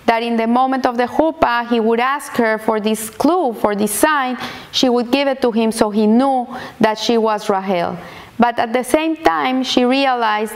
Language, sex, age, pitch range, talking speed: English, female, 30-49, 215-255 Hz, 210 wpm